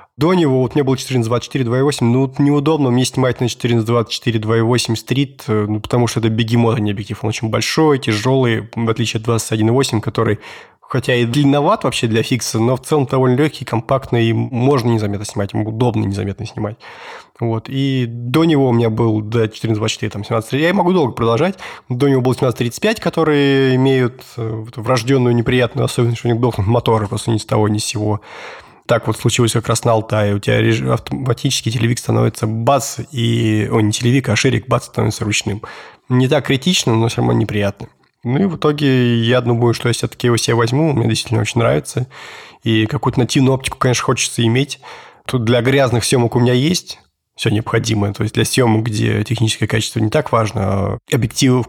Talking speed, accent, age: 195 wpm, native, 20-39